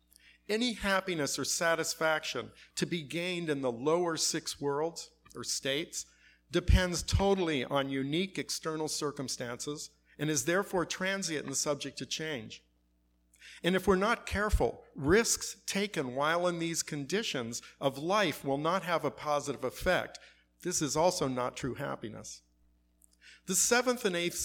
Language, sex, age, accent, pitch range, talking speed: English, male, 50-69, American, 130-175 Hz, 140 wpm